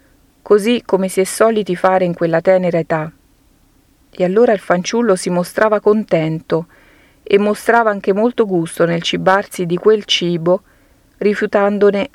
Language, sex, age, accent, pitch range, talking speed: Italian, female, 40-59, native, 175-210 Hz, 140 wpm